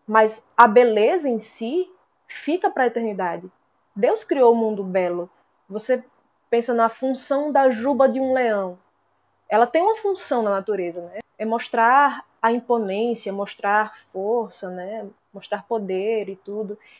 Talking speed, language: 145 wpm, Portuguese